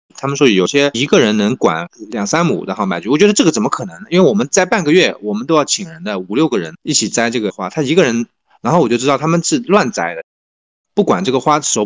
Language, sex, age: Chinese, male, 20-39